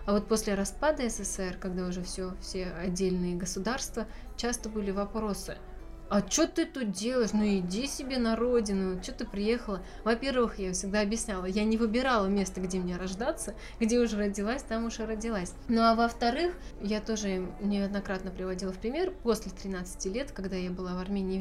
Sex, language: female, Russian